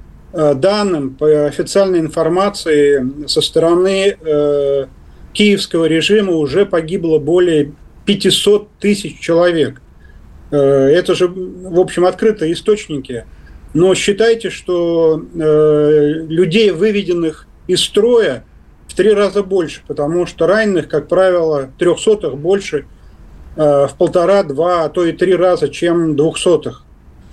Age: 40-59